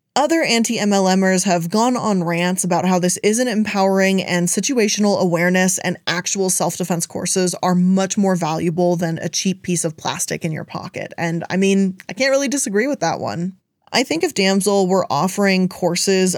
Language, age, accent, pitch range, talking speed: English, 20-39, American, 175-205 Hz, 175 wpm